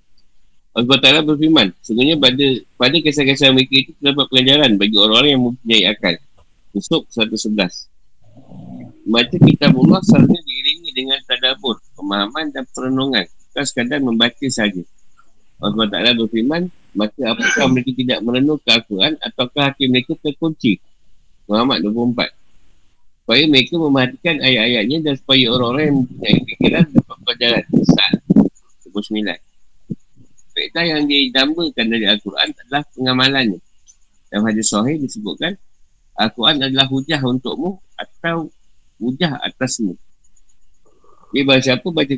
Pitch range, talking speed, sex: 110-140 Hz, 120 wpm, male